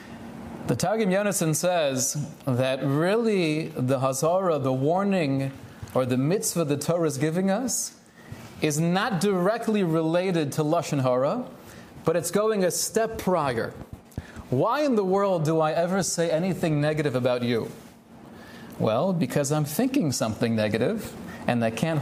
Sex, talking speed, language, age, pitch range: male, 140 wpm, English, 30-49, 155-210 Hz